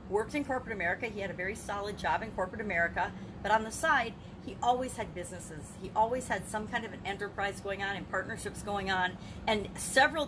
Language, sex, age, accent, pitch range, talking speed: English, female, 40-59, American, 180-225 Hz, 215 wpm